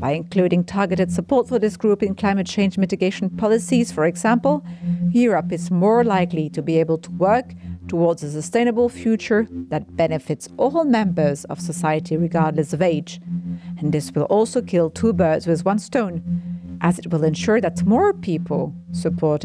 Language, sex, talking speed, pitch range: English, female, 165 wpm, 160-205 Hz